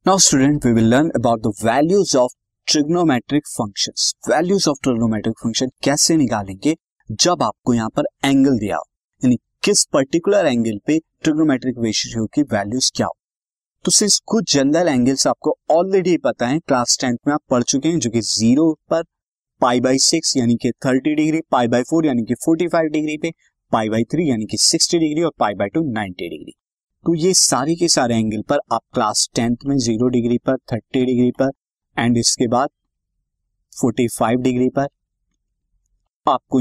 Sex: male